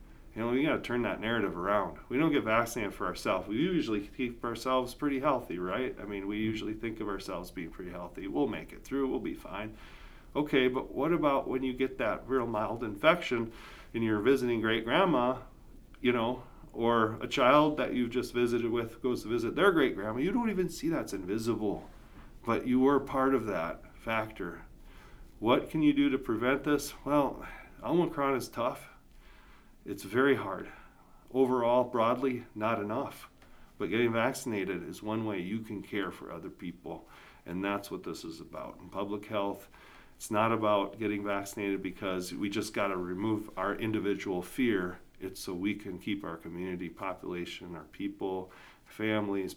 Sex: male